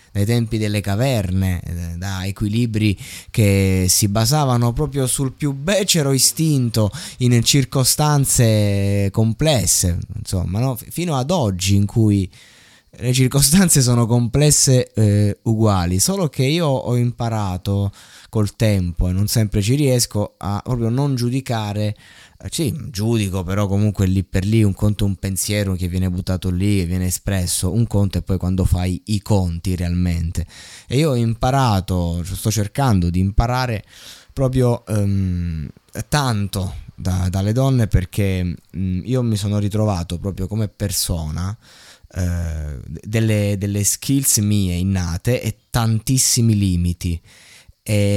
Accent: native